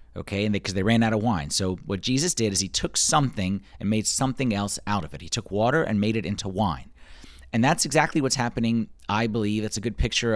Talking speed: 250 wpm